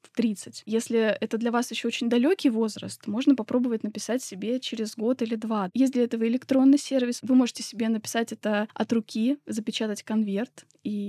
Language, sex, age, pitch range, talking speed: Russian, female, 20-39, 215-255 Hz, 175 wpm